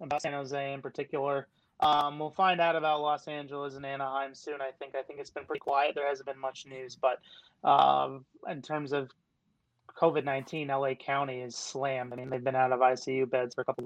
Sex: male